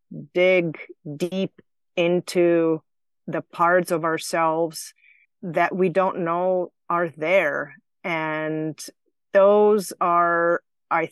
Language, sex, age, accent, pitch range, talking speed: English, female, 30-49, American, 150-185 Hz, 90 wpm